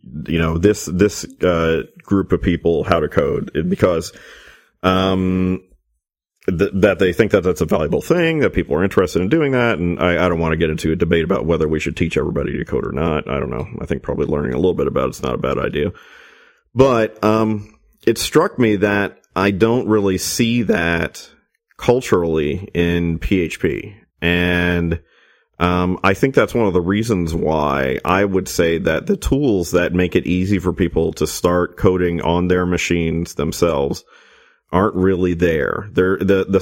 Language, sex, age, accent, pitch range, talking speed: English, male, 40-59, American, 85-95 Hz, 185 wpm